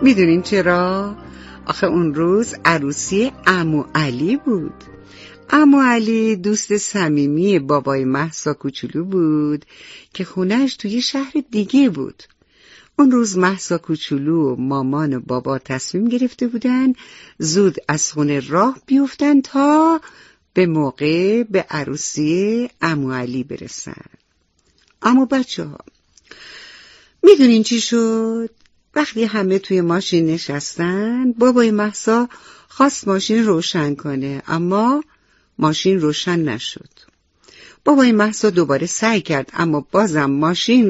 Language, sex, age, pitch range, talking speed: English, female, 60-79, 155-230 Hz, 110 wpm